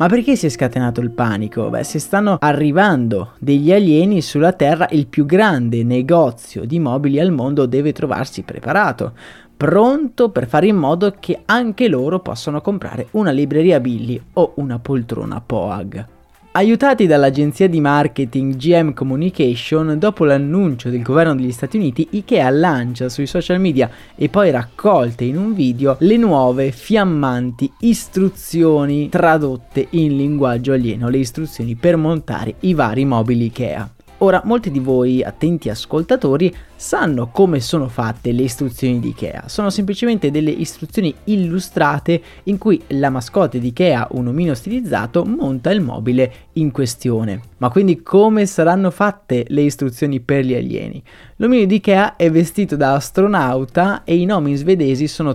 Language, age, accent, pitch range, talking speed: Italian, 20-39, native, 130-180 Hz, 150 wpm